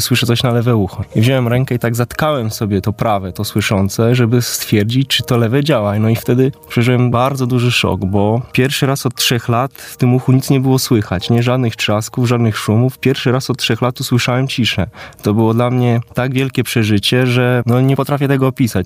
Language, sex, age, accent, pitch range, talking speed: Polish, male, 20-39, native, 105-125 Hz, 215 wpm